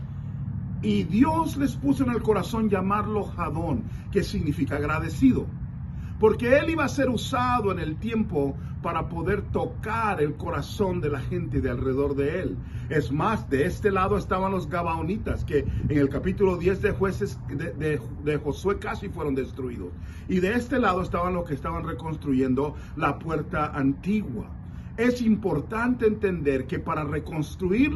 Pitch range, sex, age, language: 140-200 Hz, male, 40-59, English